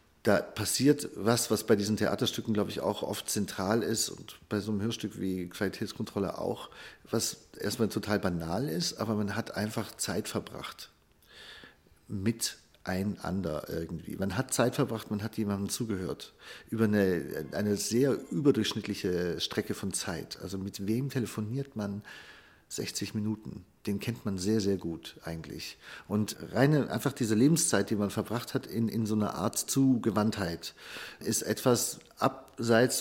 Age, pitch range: 50-69, 100-115 Hz